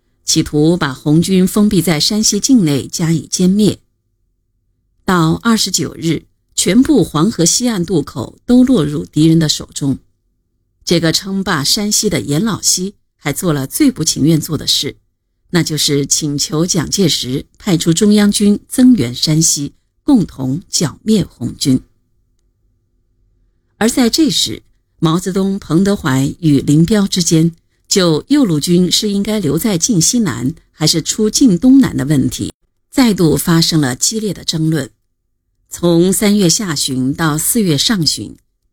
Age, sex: 50-69, female